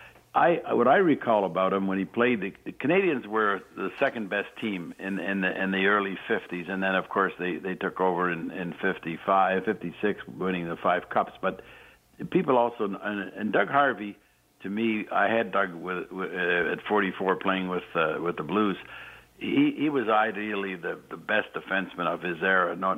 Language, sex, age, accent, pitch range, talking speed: English, male, 60-79, American, 90-110 Hz, 190 wpm